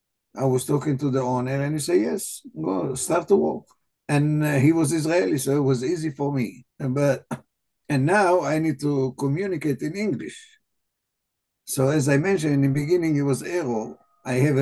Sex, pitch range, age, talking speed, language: male, 135-170 Hz, 60-79, 195 wpm, English